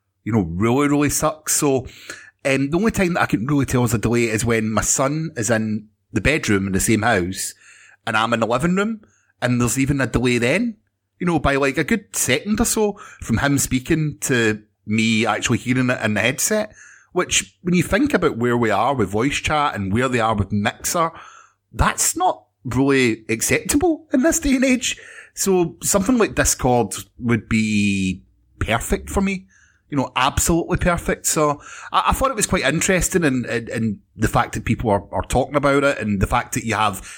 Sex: male